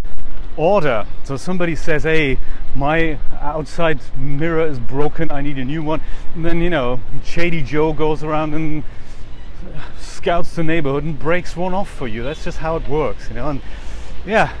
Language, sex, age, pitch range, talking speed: English, male, 30-49, 130-165 Hz, 175 wpm